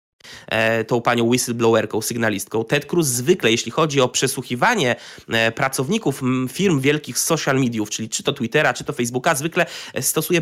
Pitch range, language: 130-165 Hz, Polish